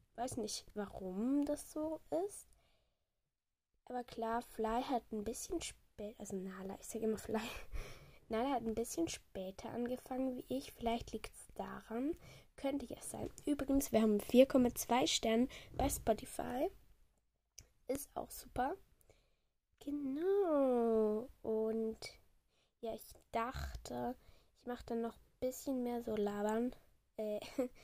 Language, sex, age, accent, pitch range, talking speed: German, female, 10-29, German, 220-265 Hz, 125 wpm